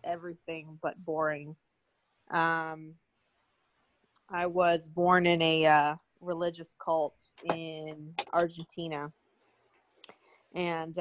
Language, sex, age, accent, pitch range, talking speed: English, female, 20-39, American, 155-175 Hz, 80 wpm